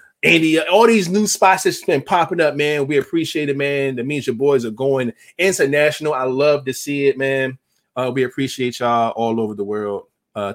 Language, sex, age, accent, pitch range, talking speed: English, male, 20-39, American, 135-180 Hz, 205 wpm